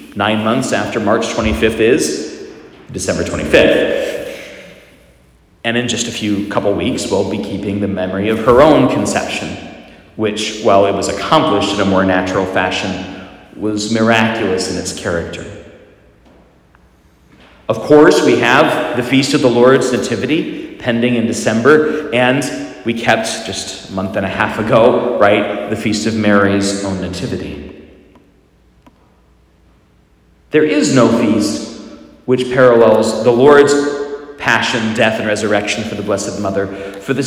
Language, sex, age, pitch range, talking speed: English, male, 40-59, 100-135 Hz, 140 wpm